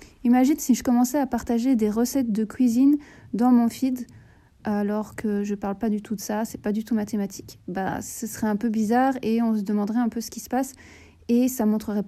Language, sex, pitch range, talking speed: French, female, 215-255 Hz, 235 wpm